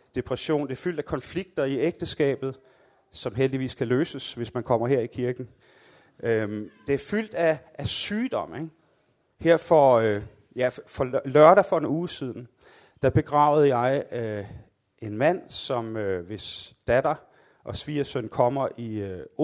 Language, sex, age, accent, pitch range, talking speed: Danish, male, 30-49, native, 115-140 Hz, 155 wpm